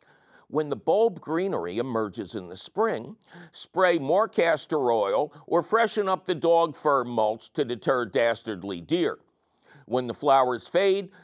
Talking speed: 140 wpm